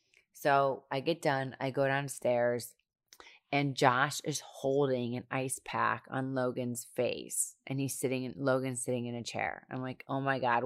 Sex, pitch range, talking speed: female, 130-150 Hz, 170 wpm